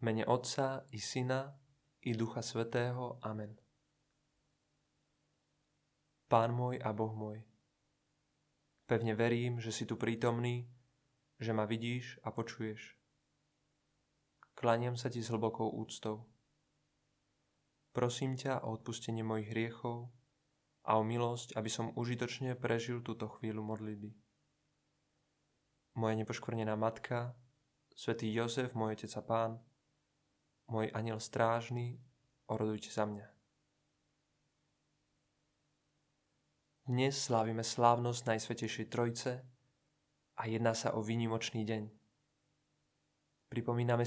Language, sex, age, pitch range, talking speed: Czech, male, 20-39, 110-130 Hz, 100 wpm